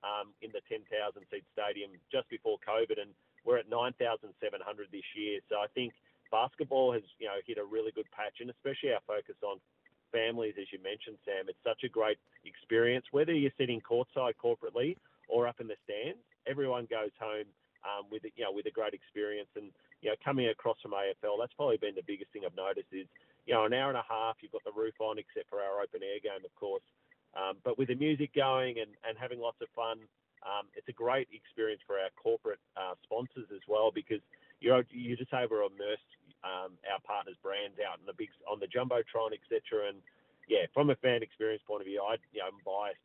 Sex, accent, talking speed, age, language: male, Australian, 215 wpm, 40-59, English